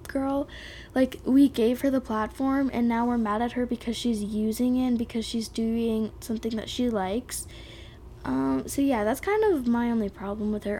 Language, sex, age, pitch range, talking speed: English, female, 10-29, 220-265 Hz, 200 wpm